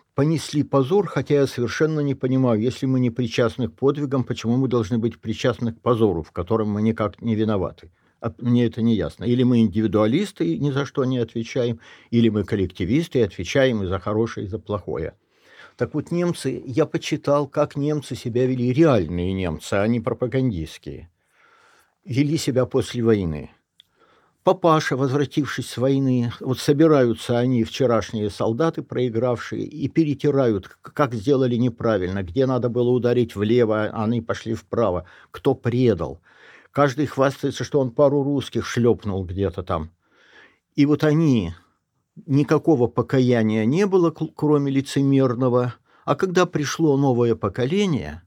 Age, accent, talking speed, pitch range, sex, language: 60-79, native, 145 wpm, 110-140 Hz, male, Russian